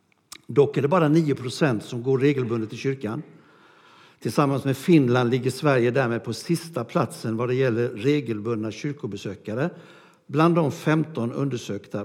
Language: Swedish